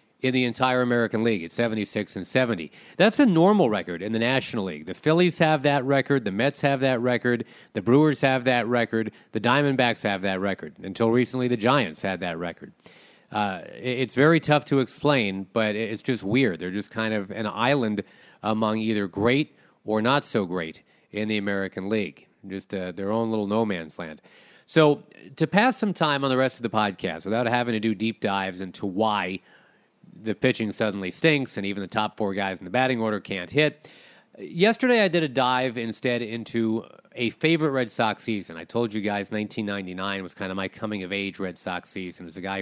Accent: American